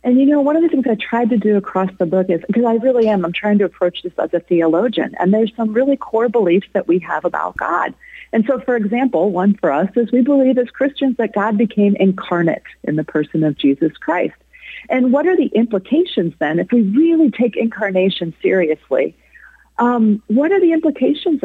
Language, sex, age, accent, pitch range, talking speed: English, female, 40-59, American, 180-255 Hz, 215 wpm